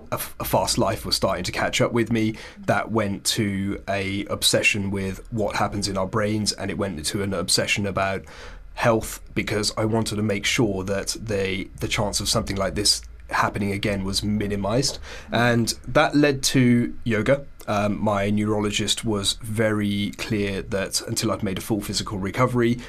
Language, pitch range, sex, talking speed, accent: English, 100-115 Hz, male, 175 wpm, British